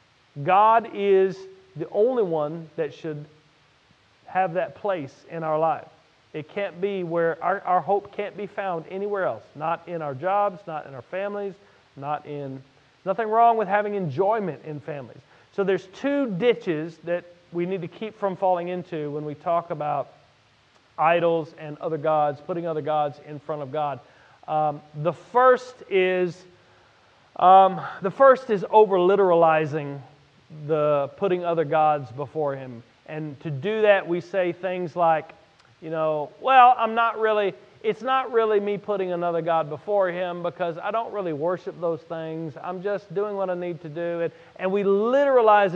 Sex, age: male, 40-59